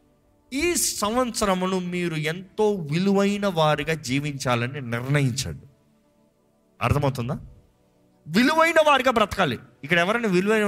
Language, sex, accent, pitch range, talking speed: Telugu, male, native, 135-200 Hz, 85 wpm